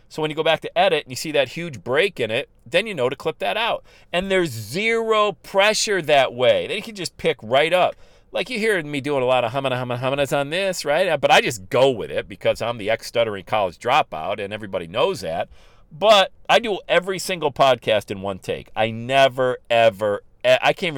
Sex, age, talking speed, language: male, 40-59, 225 wpm, English